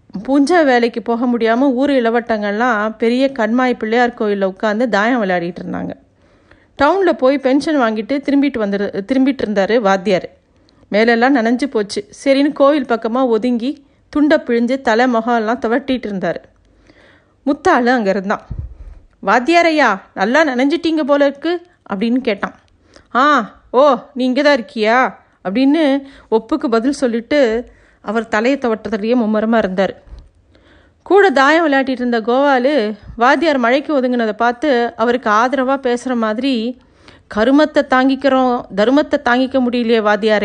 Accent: native